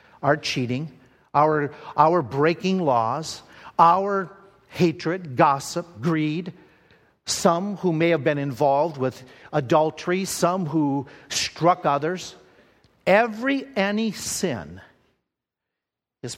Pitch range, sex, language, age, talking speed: 125-190 Hz, male, English, 50-69, 95 wpm